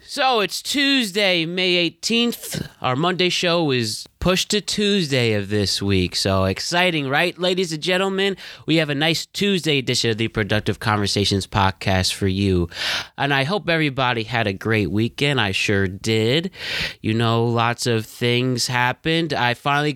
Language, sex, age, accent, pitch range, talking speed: English, male, 30-49, American, 105-150 Hz, 160 wpm